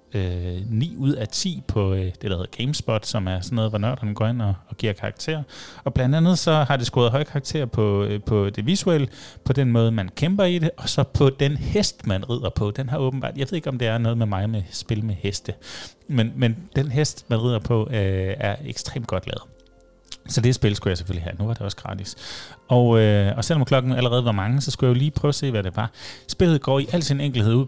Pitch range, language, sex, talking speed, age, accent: 105-135 Hz, Danish, male, 250 wpm, 30-49, native